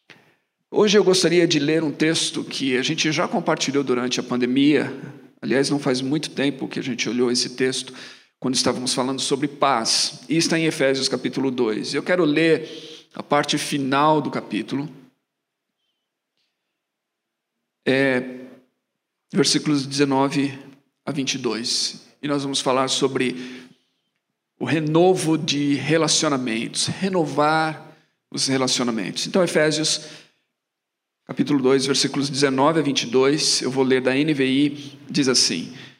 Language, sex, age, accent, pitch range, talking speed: Portuguese, male, 50-69, Brazilian, 135-160 Hz, 125 wpm